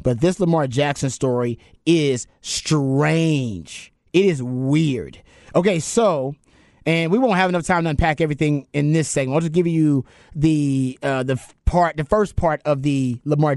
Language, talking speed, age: English, 170 wpm, 30-49